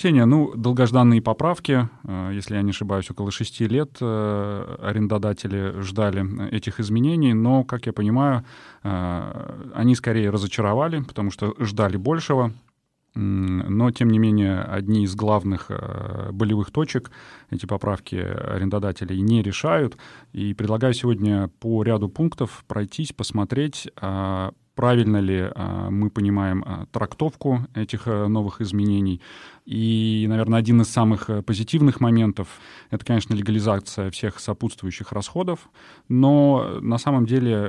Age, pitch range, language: 30-49, 100-120 Hz, Russian